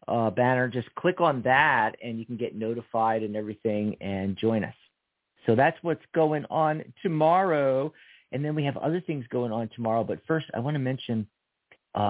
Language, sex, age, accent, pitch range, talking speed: English, male, 50-69, American, 115-155 Hz, 190 wpm